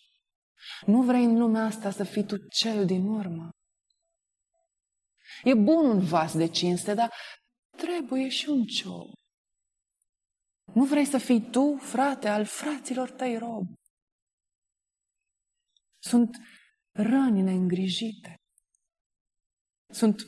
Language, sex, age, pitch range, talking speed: Romanian, female, 20-39, 180-245 Hz, 105 wpm